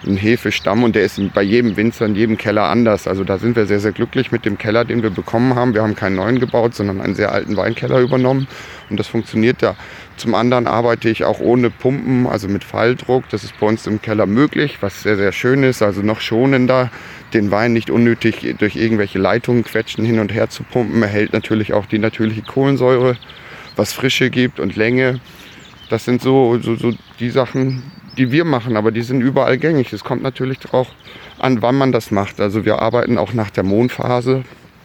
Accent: German